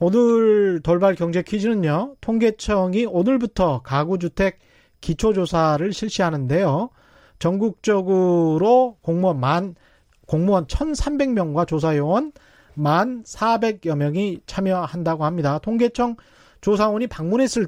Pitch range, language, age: 165-235 Hz, Korean, 30-49